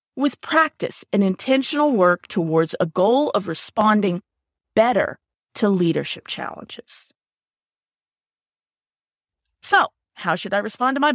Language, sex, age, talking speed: English, female, 40-59, 115 wpm